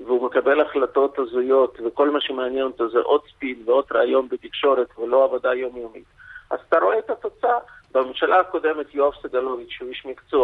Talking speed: 165 wpm